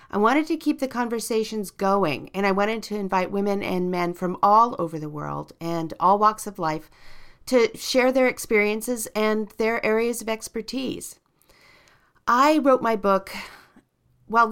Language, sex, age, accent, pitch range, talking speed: English, female, 40-59, American, 165-220 Hz, 160 wpm